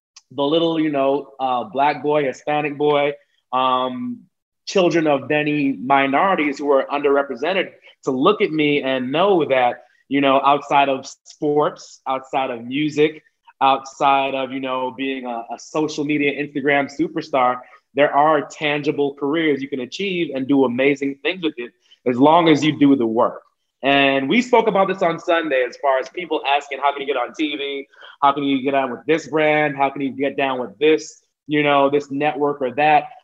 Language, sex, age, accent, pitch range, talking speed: English, male, 30-49, American, 140-155 Hz, 185 wpm